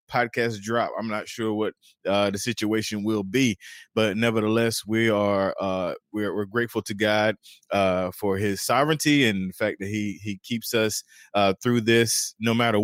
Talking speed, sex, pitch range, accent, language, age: 175 wpm, male, 105-130 Hz, American, English, 20-39